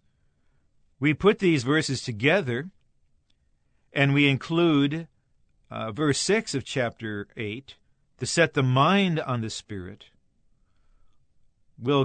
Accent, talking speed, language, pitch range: American, 110 wpm, English, 115-145 Hz